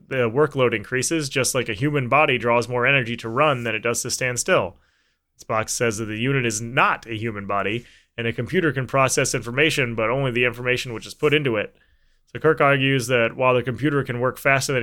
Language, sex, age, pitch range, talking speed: English, male, 20-39, 115-135 Hz, 225 wpm